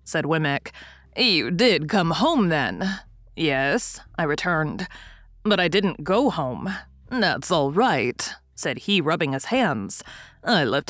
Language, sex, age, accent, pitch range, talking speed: English, female, 20-39, American, 145-200 Hz, 140 wpm